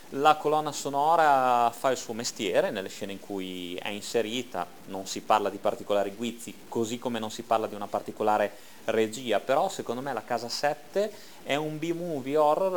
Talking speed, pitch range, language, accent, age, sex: 180 wpm, 105-130 Hz, Italian, native, 30-49, male